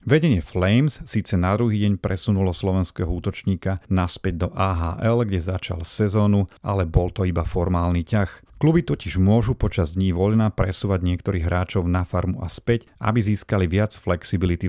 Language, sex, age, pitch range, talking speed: Slovak, male, 40-59, 90-110 Hz, 155 wpm